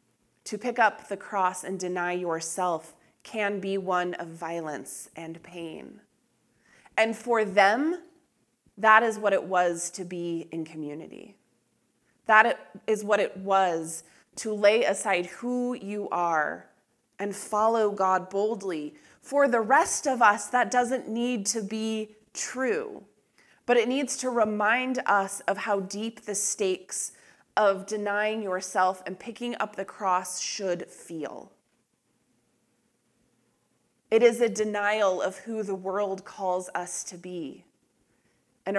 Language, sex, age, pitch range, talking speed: English, female, 20-39, 185-220 Hz, 135 wpm